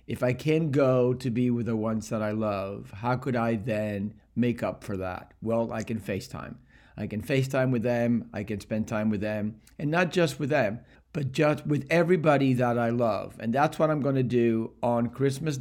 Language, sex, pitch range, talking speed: English, male, 110-140 Hz, 210 wpm